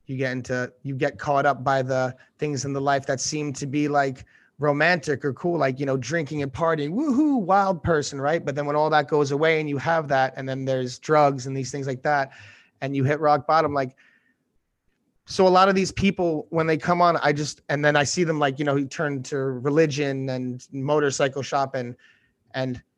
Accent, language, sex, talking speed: American, English, male, 220 wpm